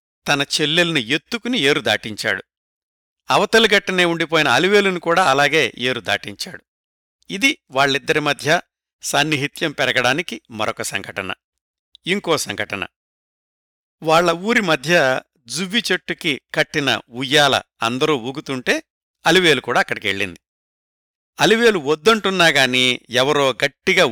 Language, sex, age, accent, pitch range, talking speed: Telugu, male, 60-79, native, 120-180 Hz, 85 wpm